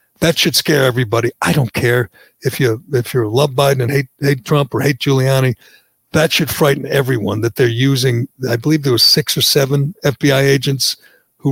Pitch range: 120-145 Hz